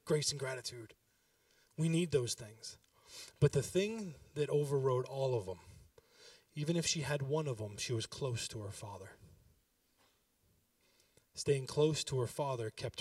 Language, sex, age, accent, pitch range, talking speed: English, male, 20-39, American, 110-135 Hz, 155 wpm